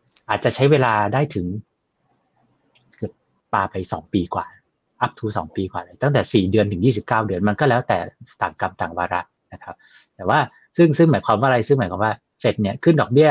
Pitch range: 100-130 Hz